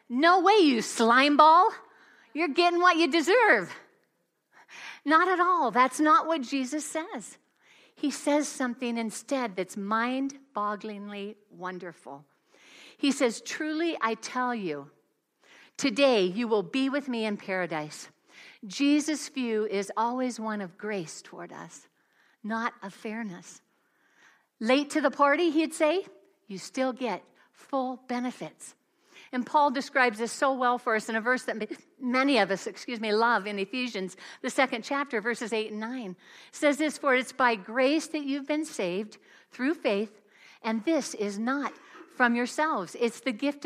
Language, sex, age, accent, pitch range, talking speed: English, female, 60-79, American, 215-285 Hz, 150 wpm